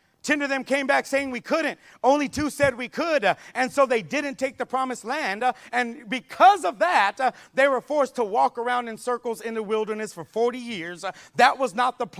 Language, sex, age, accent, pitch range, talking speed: English, male, 40-59, American, 235-295 Hz, 230 wpm